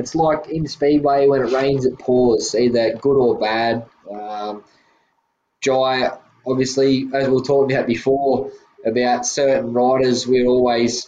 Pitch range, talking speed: 120-130 Hz, 150 wpm